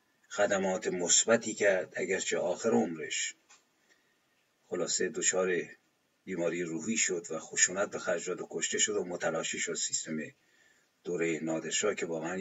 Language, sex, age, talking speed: Persian, male, 50-69, 130 wpm